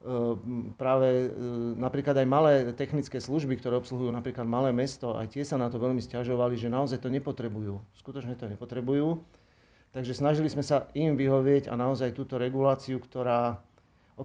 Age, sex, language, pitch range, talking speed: 40-59, male, Slovak, 120-140 Hz, 155 wpm